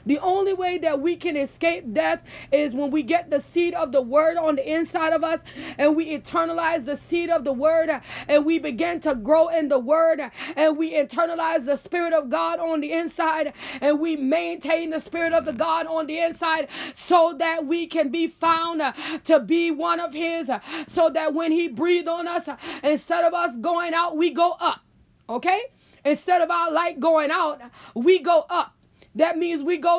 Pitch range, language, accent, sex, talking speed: 300-335 Hz, English, American, female, 200 wpm